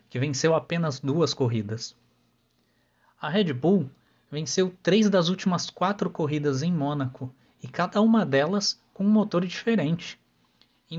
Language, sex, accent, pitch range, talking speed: Portuguese, male, Brazilian, 130-180 Hz, 135 wpm